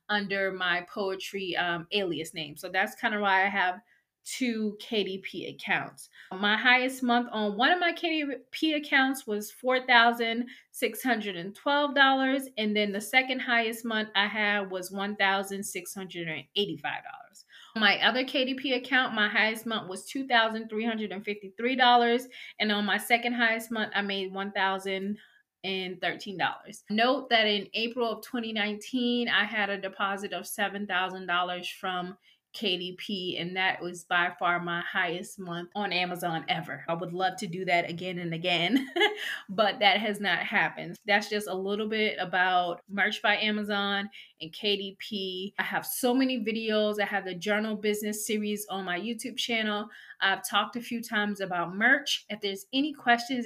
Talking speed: 150 wpm